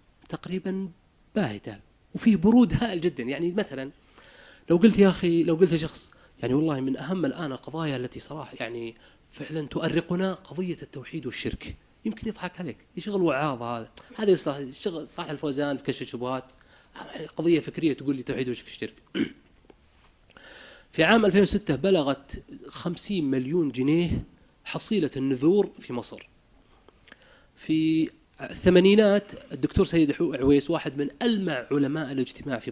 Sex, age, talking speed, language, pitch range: male, 30-49, 130 wpm, Arabic, 130-180 Hz